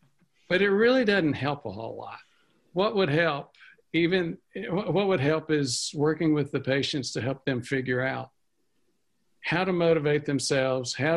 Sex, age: male, 60-79